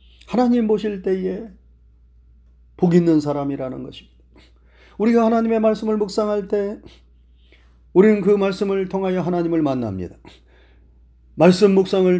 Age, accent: 30-49, native